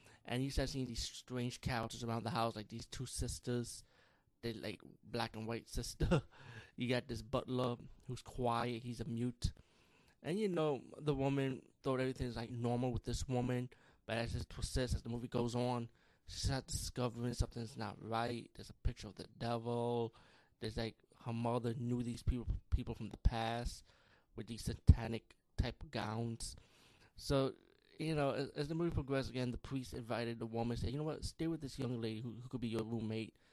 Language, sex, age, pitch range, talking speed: English, male, 20-39, 115-125 Hz, 195 wpm